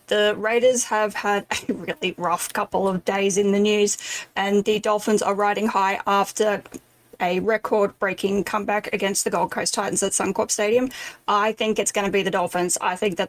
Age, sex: 10-29, female